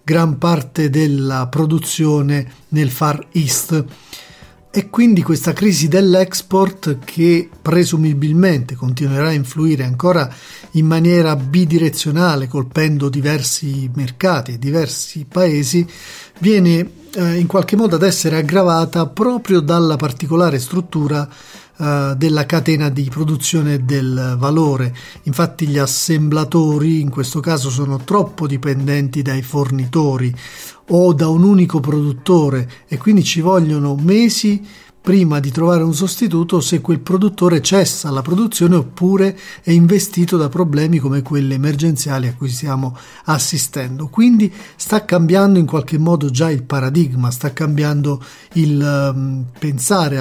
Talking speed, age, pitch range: 120 wpm, 40-59, 140-175 Hz